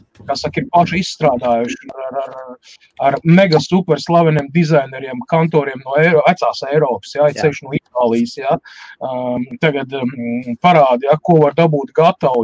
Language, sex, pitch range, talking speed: English, male, 145-175 Hz, 140 wpm